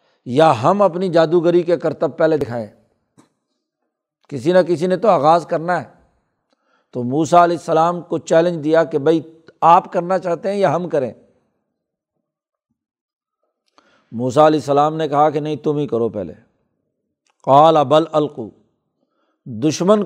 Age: 60-79